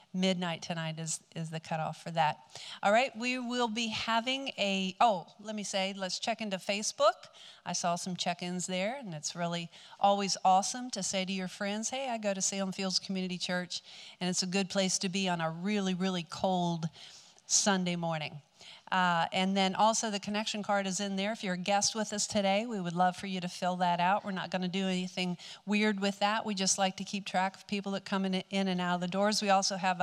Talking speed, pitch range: 230 wpm, 180-210 Hz